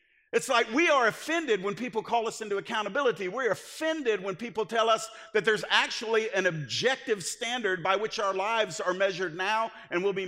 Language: English